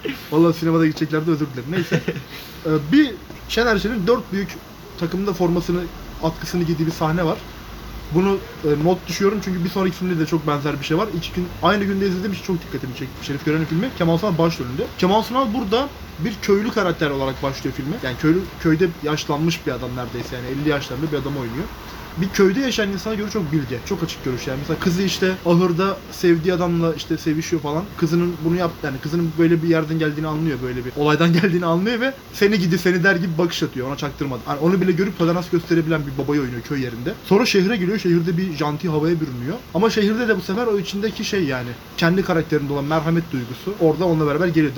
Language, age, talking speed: Turkish, 20-39, 205 wpm